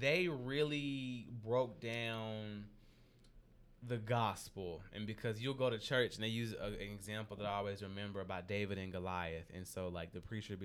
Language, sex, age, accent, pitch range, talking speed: English, male, 20-39, American, 100-130 Hz, 180 wpm